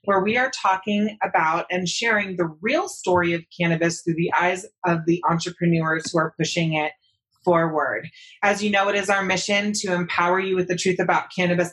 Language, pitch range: English, 170-205 Hz